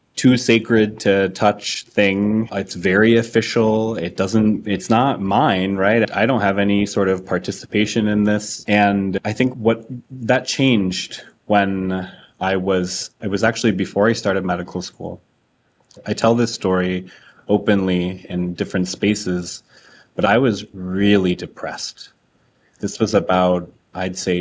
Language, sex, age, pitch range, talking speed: English, male, 30-49, 90-105 Hz, 145 wpm